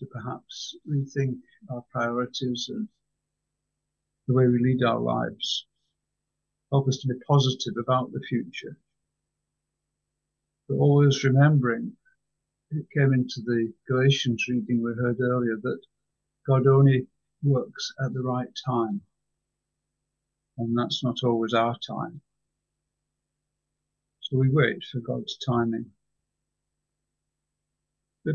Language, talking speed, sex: English, 110 wpm, male